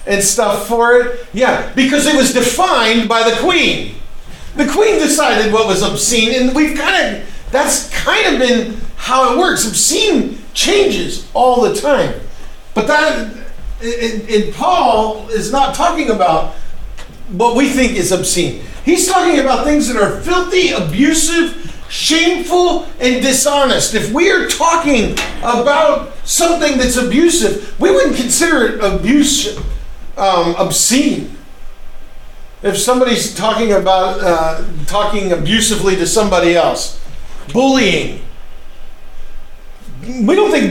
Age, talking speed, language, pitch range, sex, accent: 50-69, 130 wpm, English, 195-275 Hz, male, American